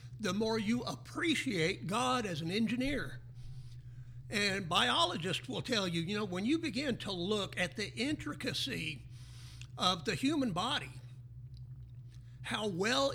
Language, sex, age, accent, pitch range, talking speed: English, male, 60-79, American, 125-205 Hz, 130 wpm